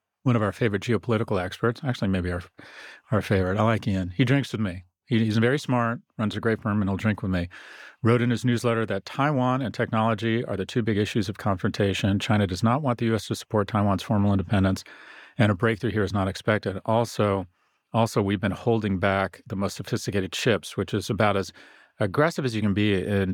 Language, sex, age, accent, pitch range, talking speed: English, male, 40-59, American, 100-120 Hz, 215 wpm